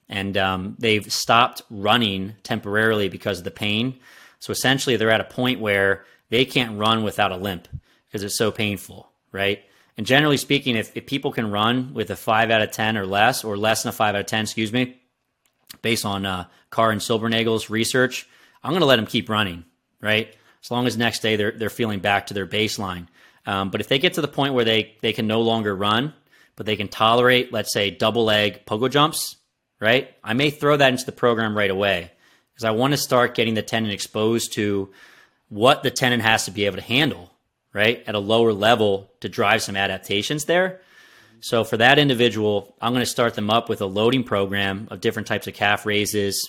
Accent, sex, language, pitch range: American, male, English, 100-120 Hz